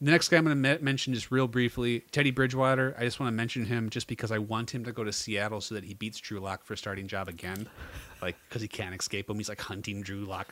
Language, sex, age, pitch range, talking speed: English, male, 30-49, 100-130 Hz, 275 wpm